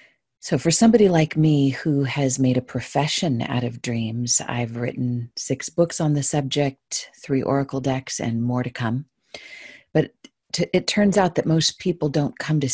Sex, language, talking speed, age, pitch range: female, English, 175 wpm, 40-59, 120-145 Hz